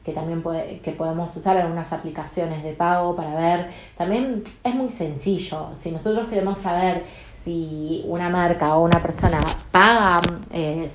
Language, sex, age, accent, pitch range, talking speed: Spanish, female, 20-39, Argentinian, 160-195 Hz, 155 wpm